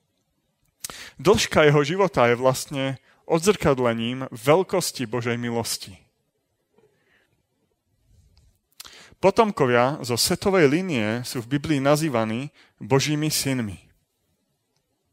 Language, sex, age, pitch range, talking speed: Slovak, male, 30-49, 120-160 Hz, 75 wpm